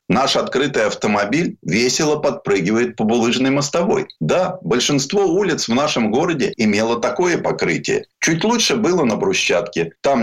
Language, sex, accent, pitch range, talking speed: Russian, male, native, 125-190 Hz, 135 wpm